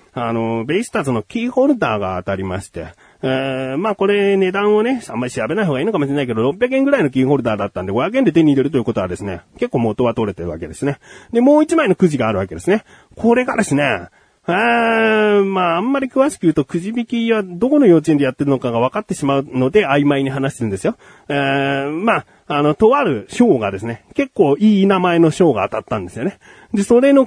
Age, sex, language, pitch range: 40-59, male, Japanese, 135-220 Hz